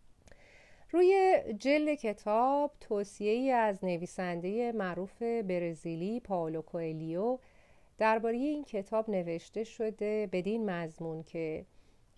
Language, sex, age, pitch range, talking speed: Persian, female, 40-59, 175-235 Hz, 85 wpm